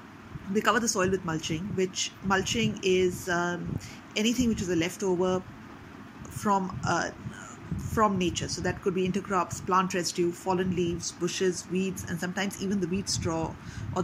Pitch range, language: 175-210 Hz, English